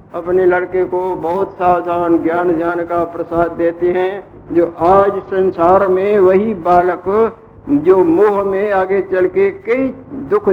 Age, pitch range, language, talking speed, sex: 60-79, 175-205 Hz, Hindi, 140 wpm, male